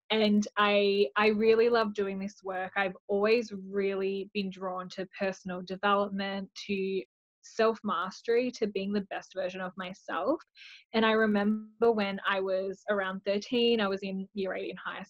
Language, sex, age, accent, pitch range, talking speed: English, female, 10-29, Australian, 190-215 Hz, 160 wpm